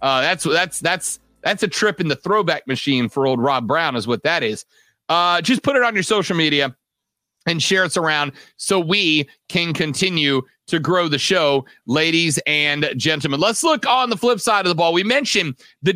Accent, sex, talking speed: American, male, 205 wpm